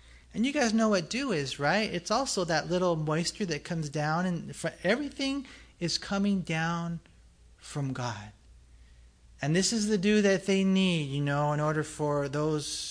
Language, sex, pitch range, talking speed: English, male, 125-175 Hz, 170 wpm